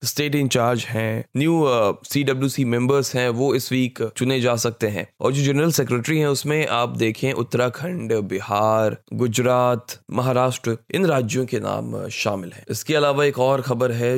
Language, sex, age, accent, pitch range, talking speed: Hindi, male, 20-39, native, 110-130 Hz, 165 wpm